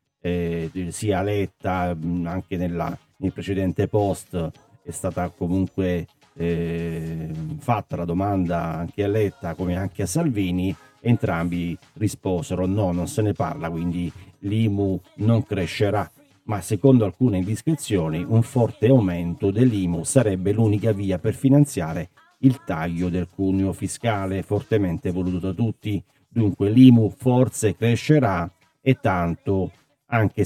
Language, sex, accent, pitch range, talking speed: Italian, male, native, 90-110 Hz, 120 wpm